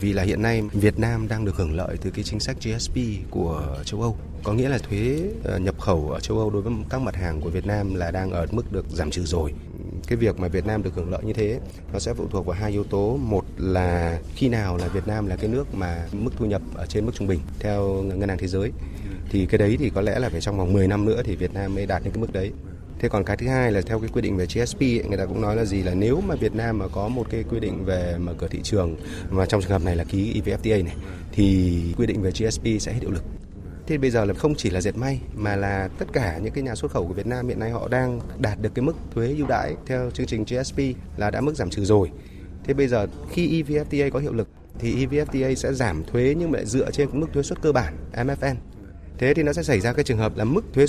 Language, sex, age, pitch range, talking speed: Vietnamese, male, 20-39, 95-120 Hz, 280 wpm